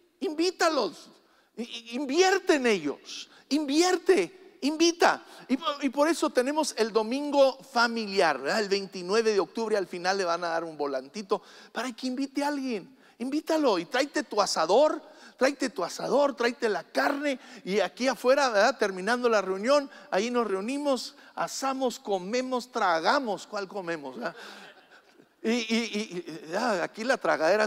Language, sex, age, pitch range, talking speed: English, male, 50-69, 205-290 Hz, 145 wpm